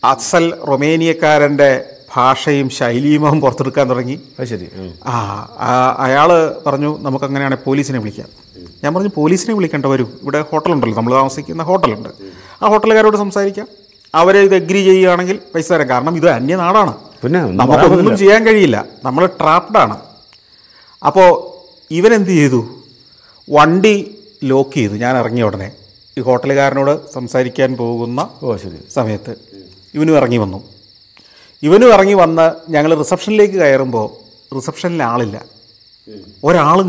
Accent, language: native, Malayalam